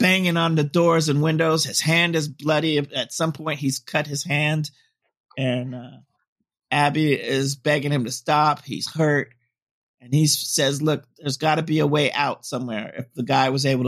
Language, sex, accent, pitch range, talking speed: English, male, American, 125-155 Hz, 190 wpm